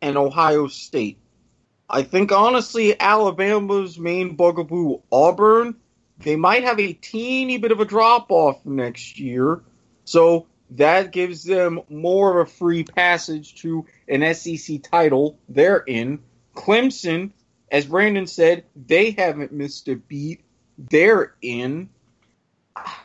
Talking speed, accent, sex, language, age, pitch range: 120 wpm, American, male, English, 30-49, 150-215 Hz